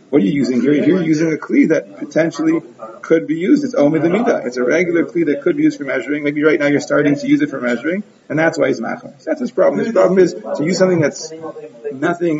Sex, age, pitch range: male, 30-49, 150-190 Hz